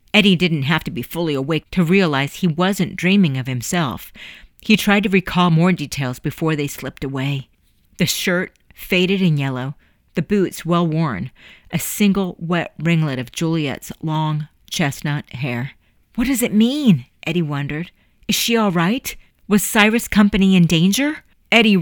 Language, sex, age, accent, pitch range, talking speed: English, female, 40-59, American, 150-190 Hz, 155 wpm